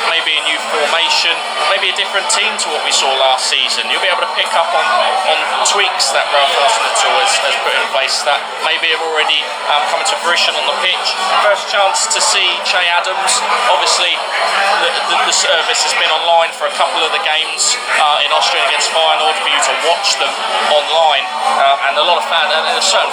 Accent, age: British, 20-39